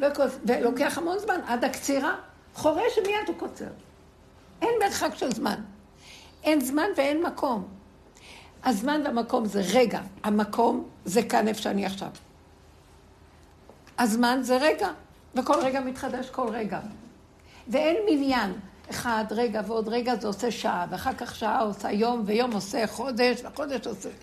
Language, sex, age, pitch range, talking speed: Hebrew, female, 60-79, 215-285 Hz, 135 wpm